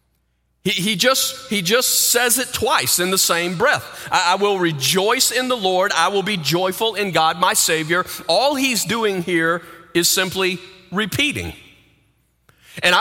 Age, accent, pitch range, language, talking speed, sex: 40-59, American, 185-250 Hz, English, 155 wpm, male